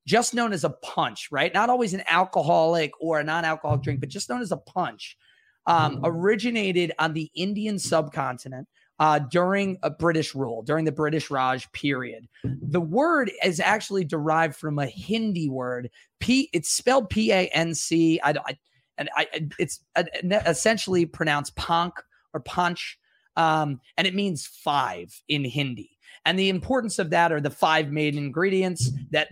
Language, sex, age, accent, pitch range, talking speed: English, male, 30-49, American, 145-185 Hz, 160 wpm